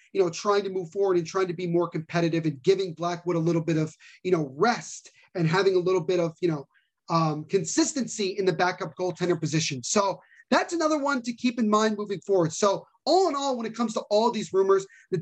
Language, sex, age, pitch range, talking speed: English, male, 30-49, 180-220 Hz, 235 wpm